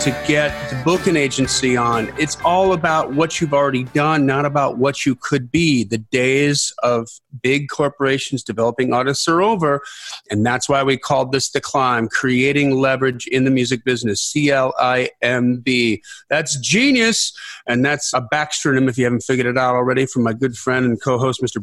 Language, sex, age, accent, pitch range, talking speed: English, male, 40-59, American, 125-145 Hz, 180 wpm